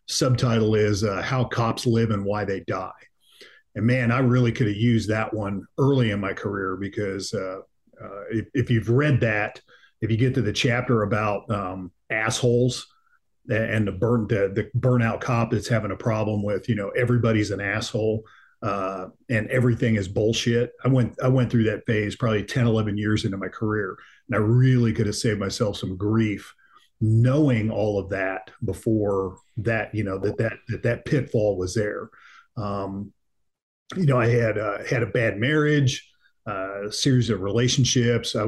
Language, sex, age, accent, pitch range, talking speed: English, male, 40-59, American, 105-120 Hz, 180 wpm